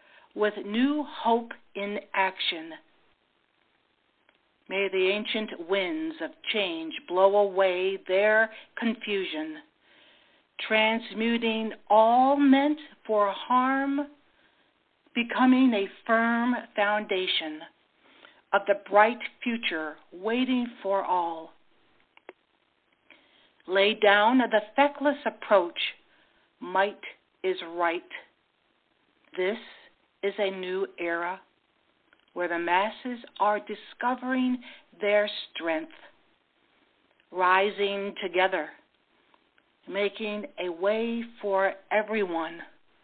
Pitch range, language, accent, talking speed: 195-275 Hz, English, American, 80 wpm